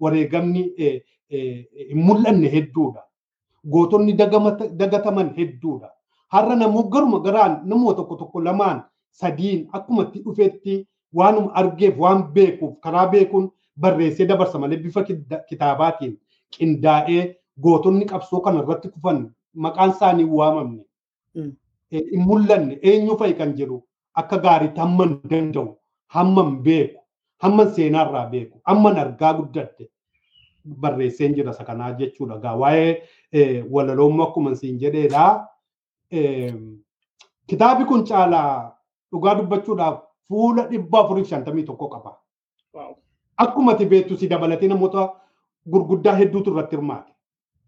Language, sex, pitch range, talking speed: Swedish, male, 155-195 Hz, 120 wpm